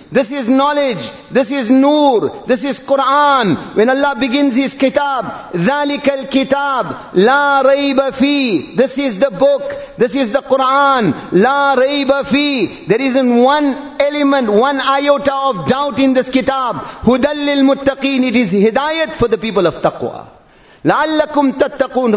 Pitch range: 255-285 Hz